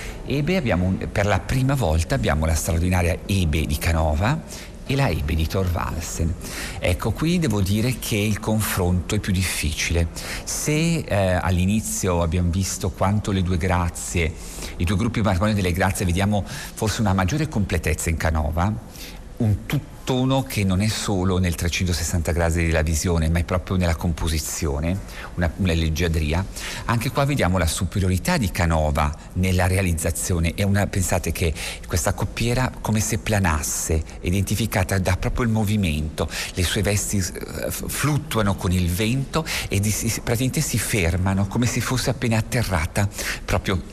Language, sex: Italian, male